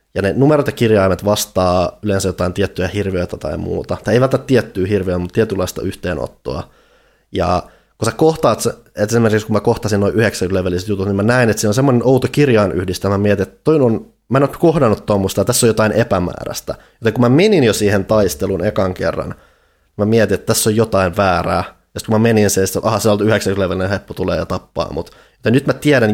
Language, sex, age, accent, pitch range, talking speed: Finnish, male, 20-39, native, 95-110 Hz, 210 wpm